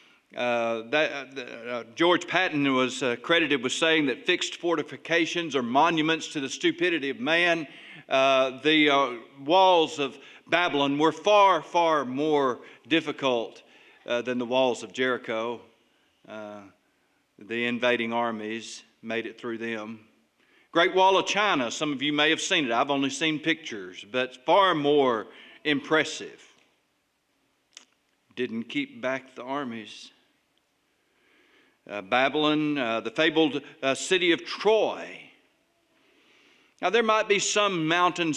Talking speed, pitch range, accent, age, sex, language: 135 wpm, 125-165 Hz, American, 50-69, male, English